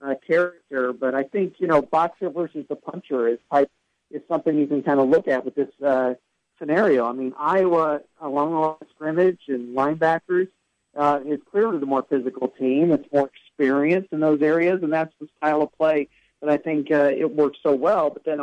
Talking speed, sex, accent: 200 wpm, male, American